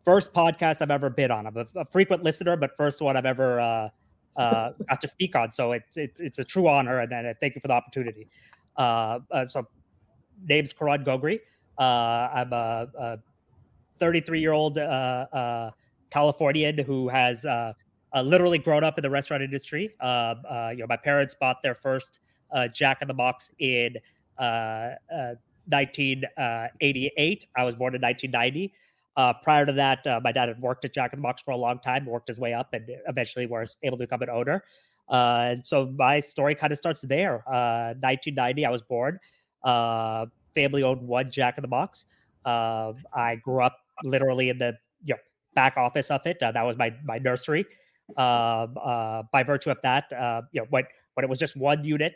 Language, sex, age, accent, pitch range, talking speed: English, male, 30-49, American, 120-145 Hz, 200 wpm